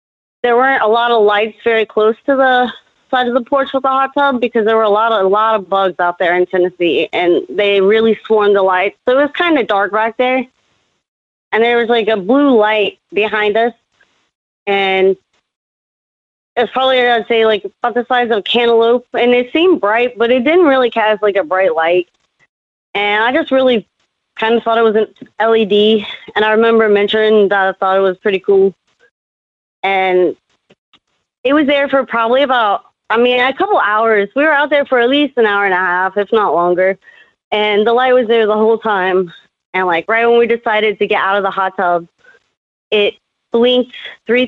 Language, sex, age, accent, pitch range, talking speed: English, female, 30-49, American, 205-250 Hz, 210 wpm